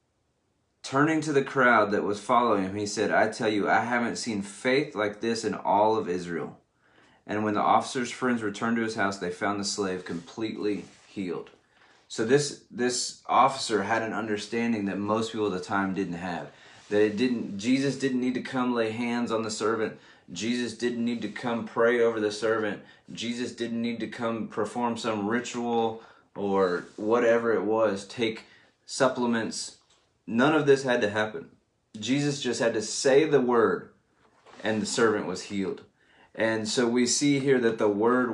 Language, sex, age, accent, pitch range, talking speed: English, male, 20-39, American, 105-120 Hz, 180 wpm